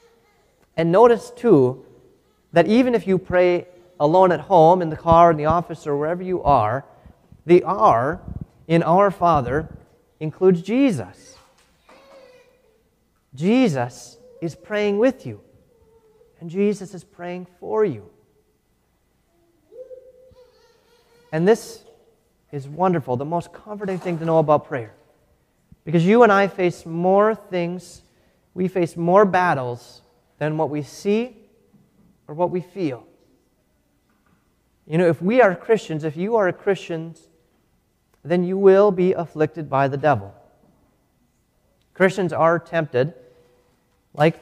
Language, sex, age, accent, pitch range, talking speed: English, male, 30-49, American, 155-195 Hz, 125 wpm